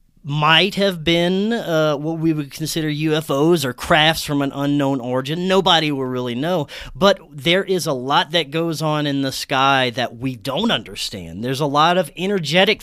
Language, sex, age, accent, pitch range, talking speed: English, male, 30-49, American, 140-175 Hz, 185 wpm